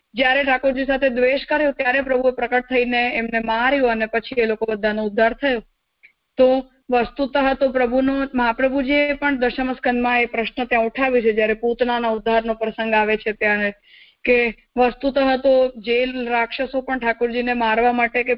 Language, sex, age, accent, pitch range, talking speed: English, female, 20-39, Indian, 230-265 Hz, 105 wpm